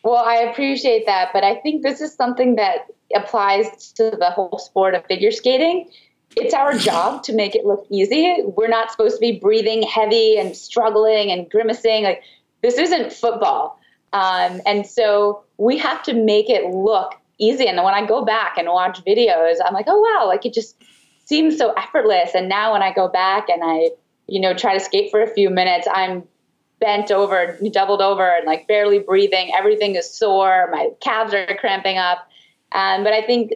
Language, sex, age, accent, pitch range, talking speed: English, female, 20-39, American, 175-225 Hz, 195 wpm